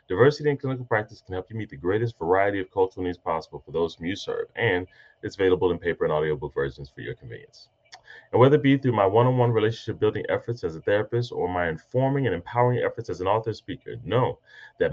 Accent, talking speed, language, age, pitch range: American, 235 wpm, English, 30-49, 110-165 Hz